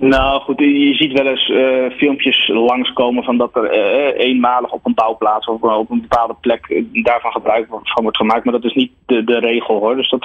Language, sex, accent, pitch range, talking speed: Dutch, male, Dutch, 120-140 Hz, 220 wpm